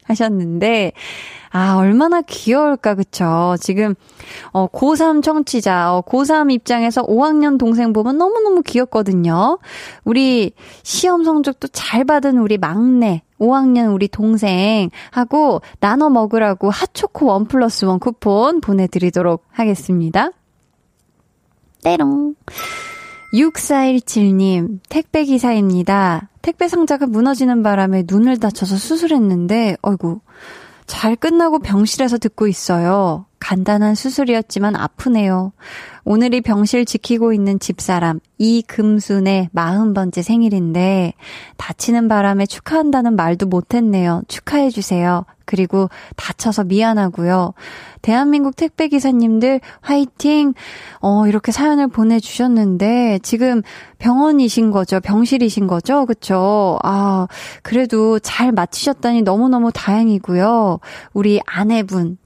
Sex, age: female, 20-39